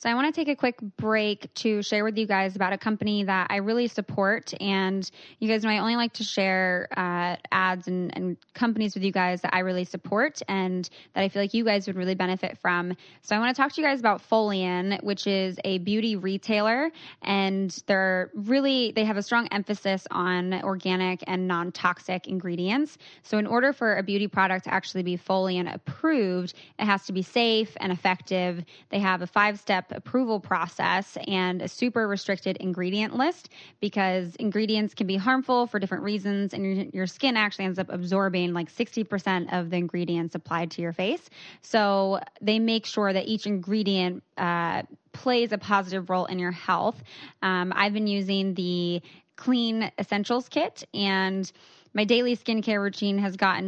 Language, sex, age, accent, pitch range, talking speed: English, female, 20-39, American, 185-215 Hz, 190 wpm